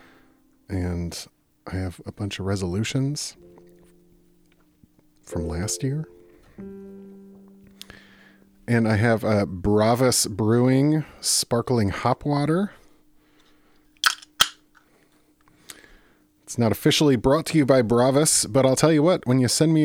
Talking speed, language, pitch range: 110 wpm, English, 100-130 Hz